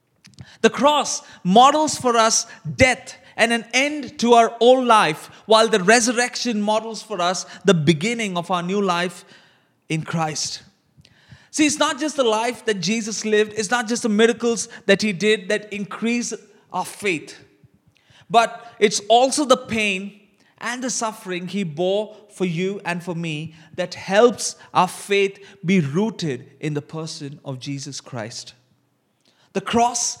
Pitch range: 175-240 Hz